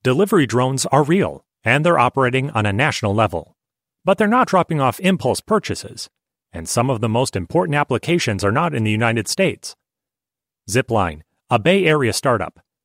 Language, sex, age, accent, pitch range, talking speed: English, male, 30-49, American, 105-140 Hz, 170 wpm